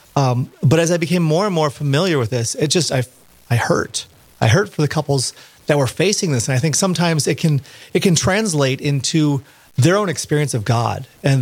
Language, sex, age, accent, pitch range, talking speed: English, male, 30-49, American, 125-155 Hz, 215 wpm